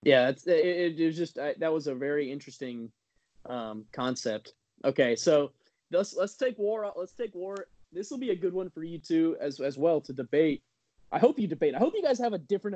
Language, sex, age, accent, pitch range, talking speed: English, male, 20-39, American, 135-190 Hz, 225 wpm